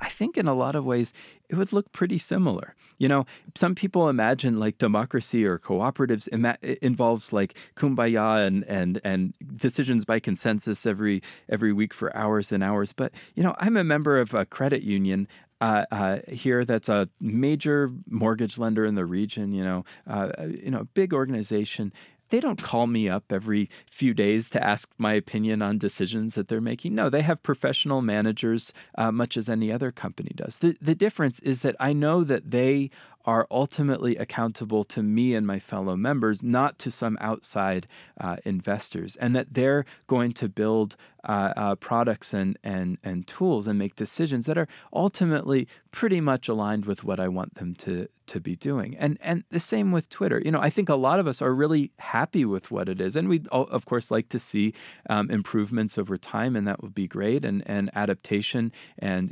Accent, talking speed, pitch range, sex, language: American, 195 wpm, 105-140 Hz, male, English